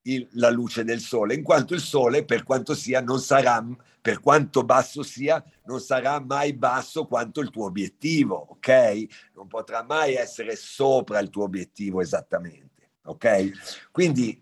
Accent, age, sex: native, 50-69, male